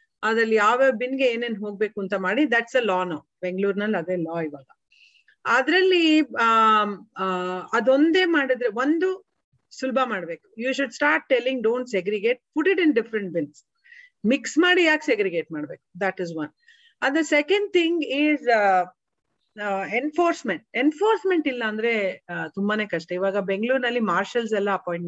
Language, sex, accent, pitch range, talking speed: Kannada, female, native, 195-275 Hz, 135 wpm